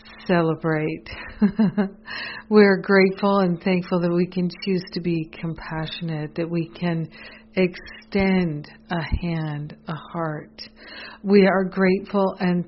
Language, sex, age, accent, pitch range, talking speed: English, female, 50-69, American, 170-195 Hz, 115 wpm